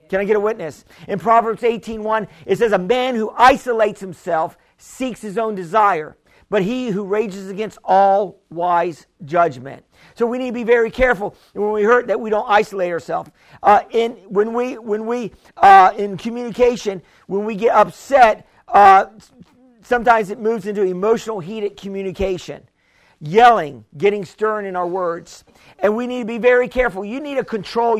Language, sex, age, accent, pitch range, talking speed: English, male, 50-69, American, 195-235 Hz, 170 wpm